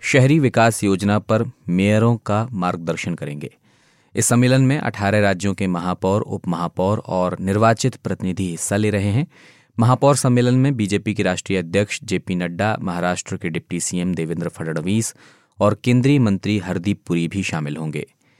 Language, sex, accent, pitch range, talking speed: Hindi, male, native, 95-120 Hz, 150 wpm